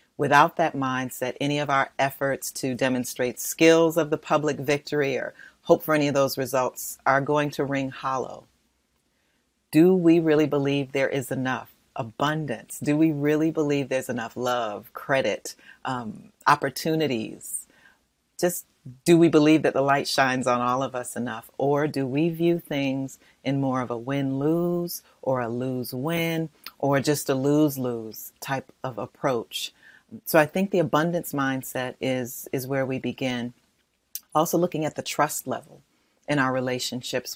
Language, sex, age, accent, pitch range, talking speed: English, female, 40-59, American, 125-150 Hz, 155 wpm